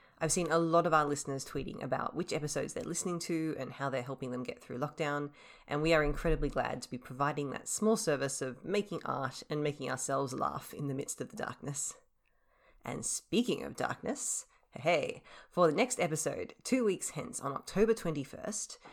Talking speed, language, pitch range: 195 wpm, English, 145-195 Hz